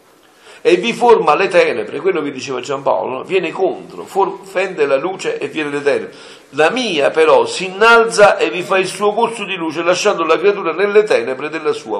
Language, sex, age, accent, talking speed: Italian, male, 50-69, native, 195 wpm